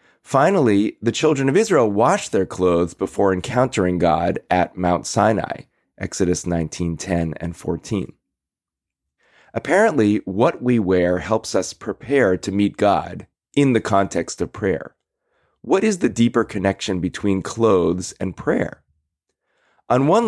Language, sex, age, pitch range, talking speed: English, male, 30-49, 95-115 Hz, 135 wpm